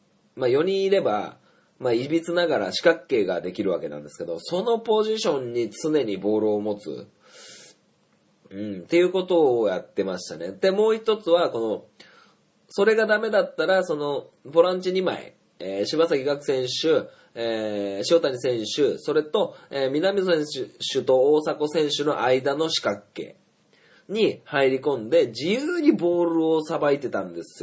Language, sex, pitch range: Japanese, male, 130-210 Hz